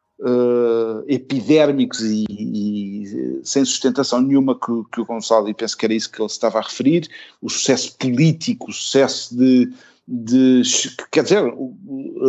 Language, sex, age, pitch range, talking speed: Portuguese, male, 50-69, 115-160 Hz, 140 wpm